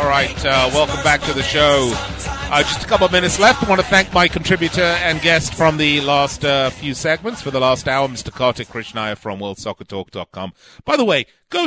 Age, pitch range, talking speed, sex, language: 40-59, 120-165 Hz, 215 wpm, male, English